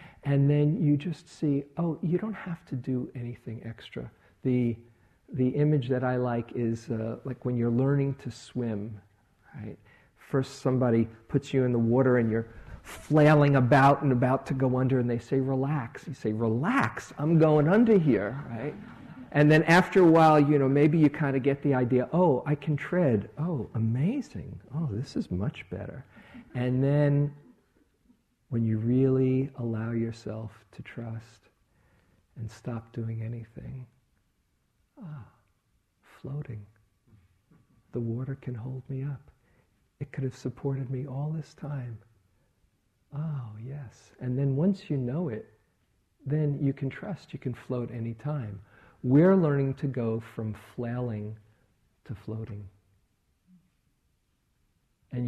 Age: 50-69